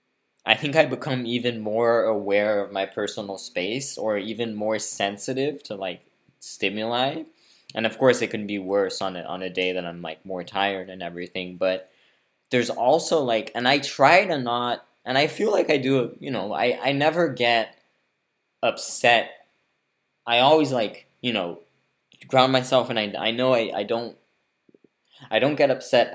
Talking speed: 175 wpm